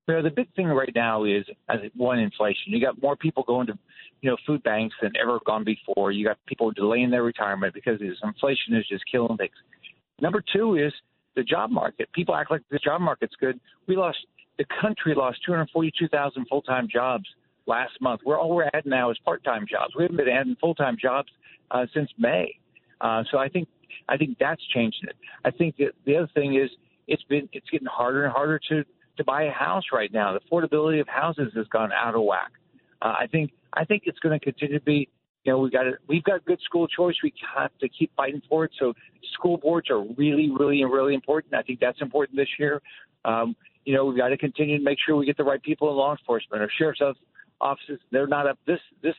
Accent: American